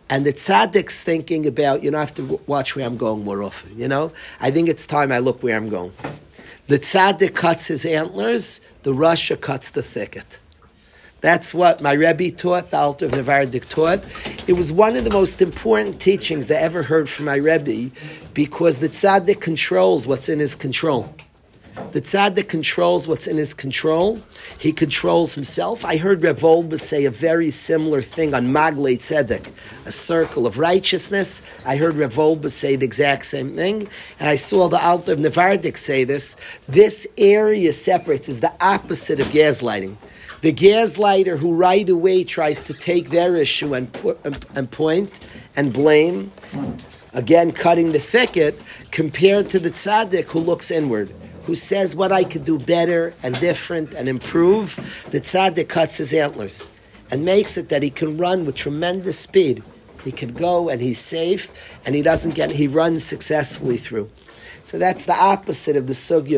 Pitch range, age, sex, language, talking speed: 140-180 Hz, 40-59, male, English, 175 wpm